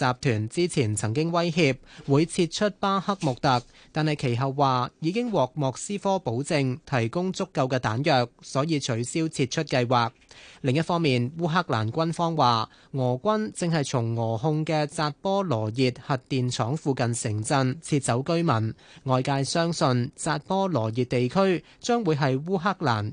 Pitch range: 125-165 Hz